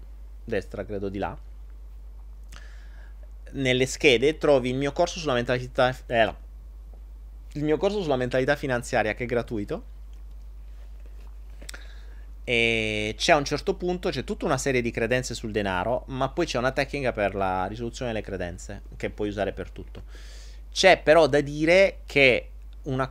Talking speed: 150 wpm